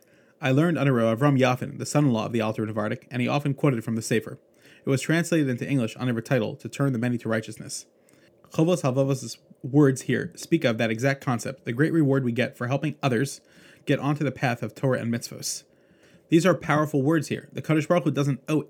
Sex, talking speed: male, 215 wpm